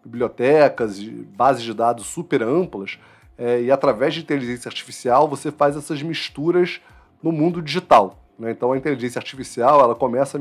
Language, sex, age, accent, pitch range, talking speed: Portuguese, male, 30-49, Brazilian, 115-145 Hz, 155 wpm